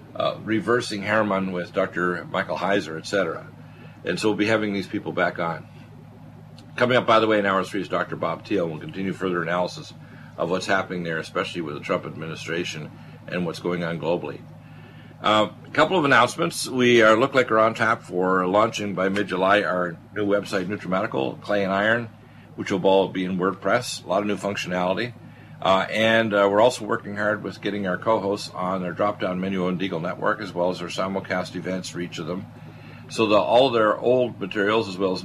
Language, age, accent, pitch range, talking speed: English, 50-69, American, 90-110 Hz, 200 wpm